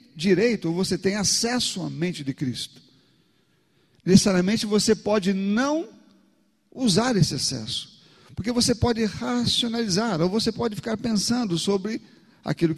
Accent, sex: Brazilian, male